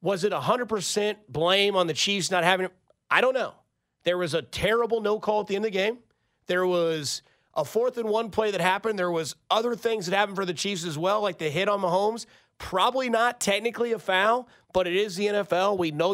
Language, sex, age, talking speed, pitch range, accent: English, male, 30-49, 230 wpm, 175-225 Hz, American